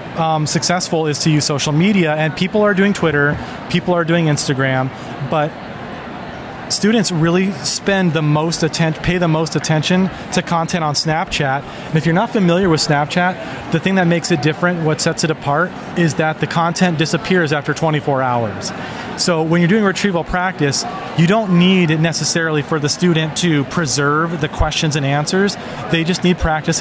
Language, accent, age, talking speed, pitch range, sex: English, American, 30-49, 180 wpm, 155-180 Hz, male